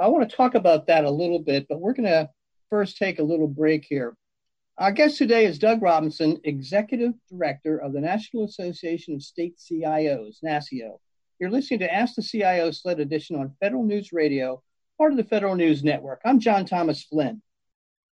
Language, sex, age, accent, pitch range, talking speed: English, male, 50-69, American, 150-205 Hz, 190 wpm